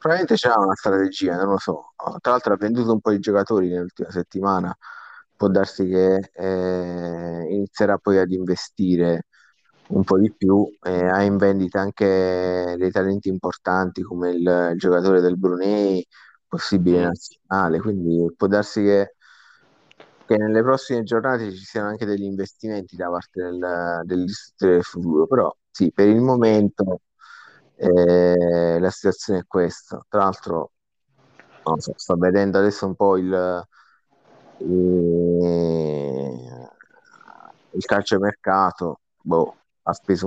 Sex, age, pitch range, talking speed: male, 30-49, 90-100 Hz, 135 wpm